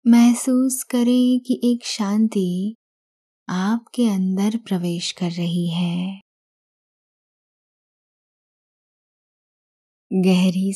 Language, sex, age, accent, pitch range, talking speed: Hindi, female, 20-39, native, 185-230 Hz, 65 wpm